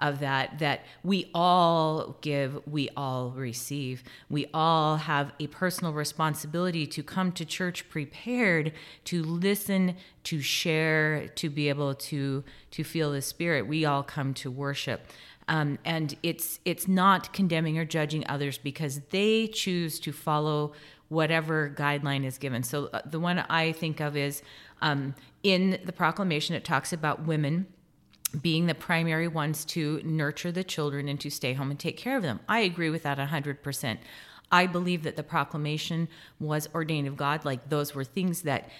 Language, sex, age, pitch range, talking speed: English, female, 30-49, 145-165 Hz, 165 wpm